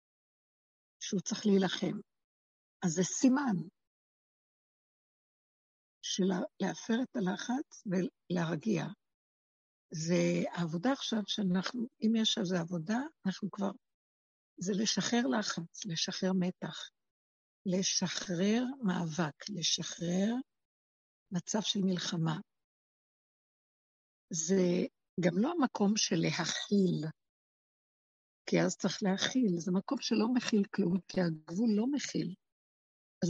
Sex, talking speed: female, 95 wpm